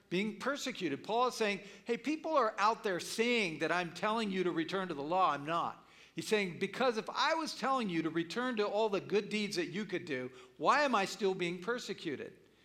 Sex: male